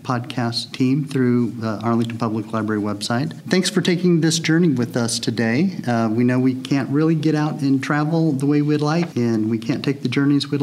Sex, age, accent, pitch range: male, 50-69, American, 115-140 Hz